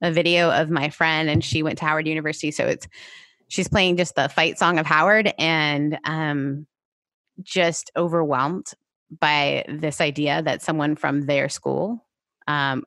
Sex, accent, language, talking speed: female, American, English, 160 wpm